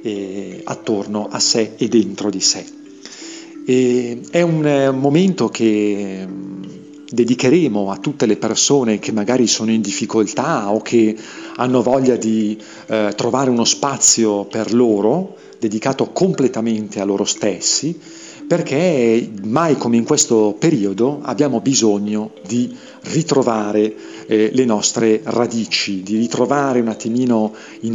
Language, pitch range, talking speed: Italian, 110-140 Hz, 125 wpm